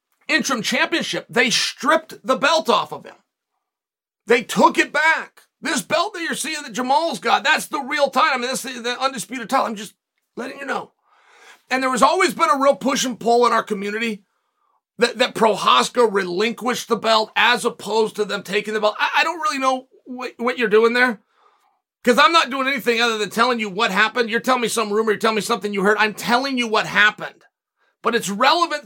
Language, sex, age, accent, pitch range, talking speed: English, male, 40-59, American, 225-290 Hz, 210 wpm